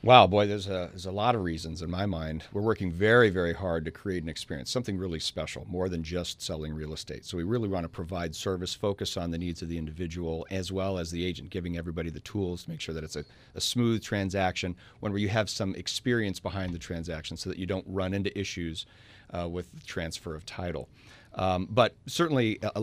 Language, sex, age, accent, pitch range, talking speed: English, male, 40-59, American, 90-105 Hz, 230 wpm